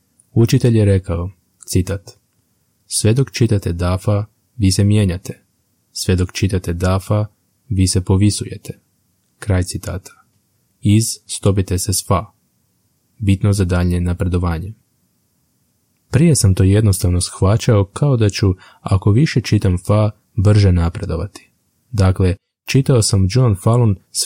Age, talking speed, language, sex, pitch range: 20-39, 120 wpm, Croatian, male, 95-115 Hz